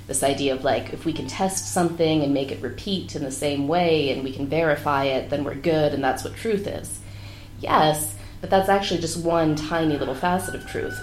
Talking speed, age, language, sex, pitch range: 225 wpm, 30-49, English, female, 100-165 Hz